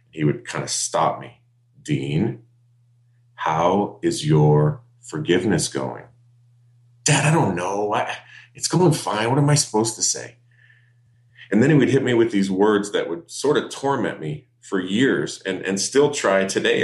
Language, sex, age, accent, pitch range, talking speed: English, male, 40-59, American, 95-120 Hz, 170 wpm